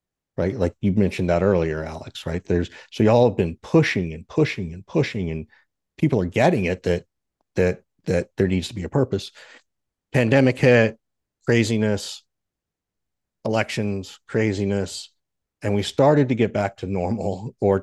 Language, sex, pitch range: English, male, 85-110 Hz